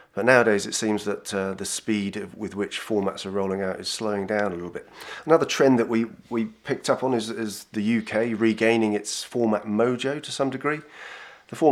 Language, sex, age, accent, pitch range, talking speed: English, male, 30-49, British, 100-115 Hz, 210 wpm